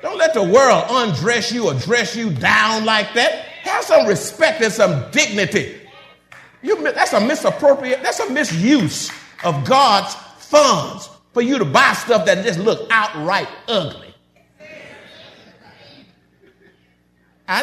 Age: 50-69